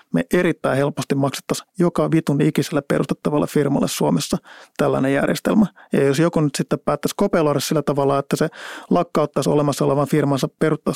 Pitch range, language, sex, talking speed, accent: 140-165 Hz, Finnish, male, 155 wpm, native